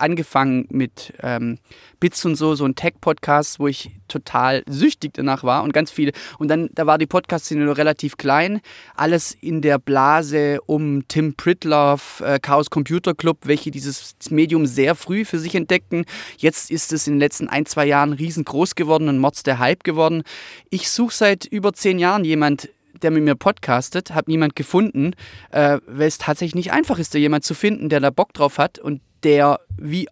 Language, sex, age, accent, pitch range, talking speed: German, male, 20-39, German, 145-175 Hz, 190 wpm